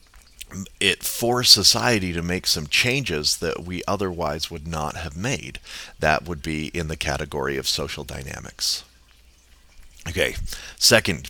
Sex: male